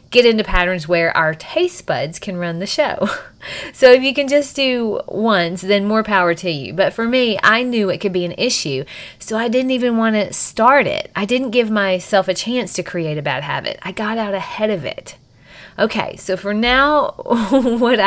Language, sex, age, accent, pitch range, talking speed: English, female, 30-49, American, 180-240 Hz, 210 wpm